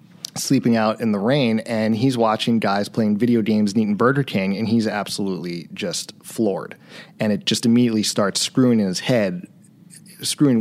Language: English